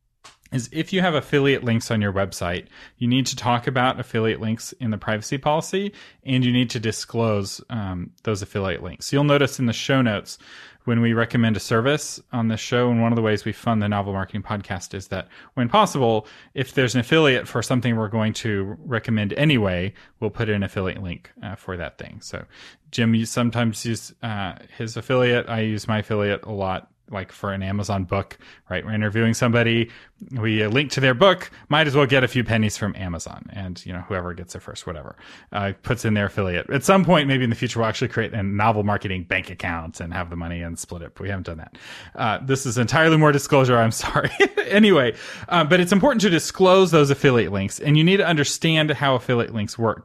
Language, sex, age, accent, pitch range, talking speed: English, male, 30-49, American, 100-135 Hz, 220 wpm